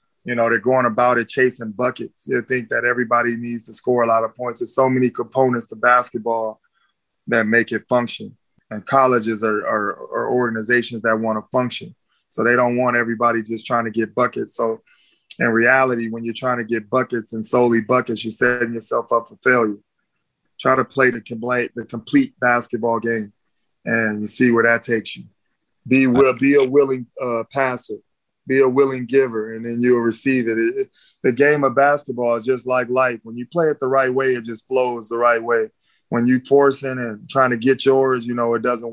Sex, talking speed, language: male, 200 wpm, English